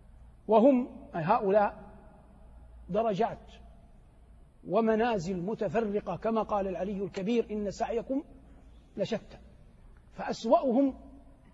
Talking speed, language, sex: 70 wpm, Arabic, male